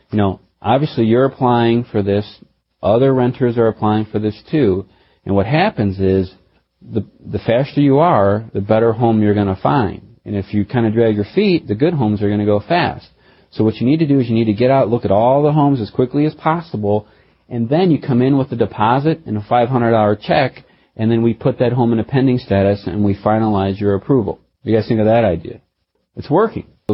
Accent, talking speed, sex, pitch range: American, 230 wpm, male, 105-130 Hz